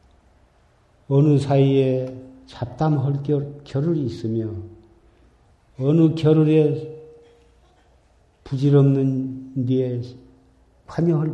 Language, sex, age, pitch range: Korean, male, 50-69, 95-135 Hz